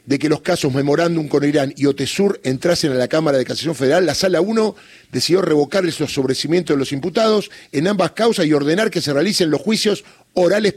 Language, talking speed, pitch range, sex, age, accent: Spanish, 205 wpm, 135-185 Hz, male, 40-59, Argentinian